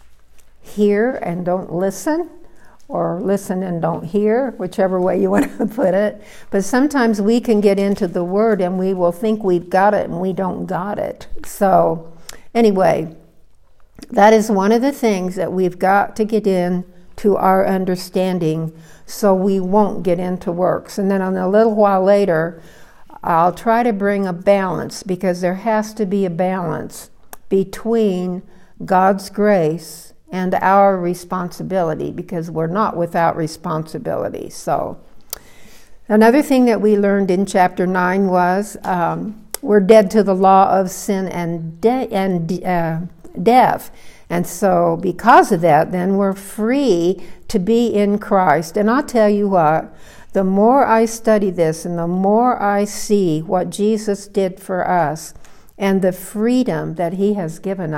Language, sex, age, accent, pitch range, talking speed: English, female, 60-79, American, 180-210 Hz, 155 wpm